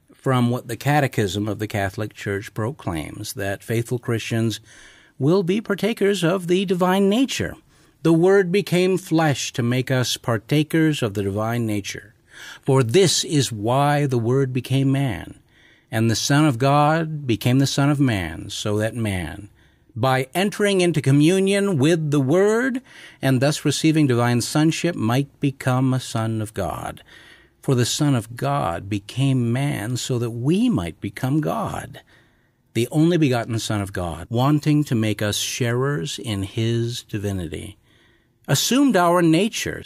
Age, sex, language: 50-69, male, English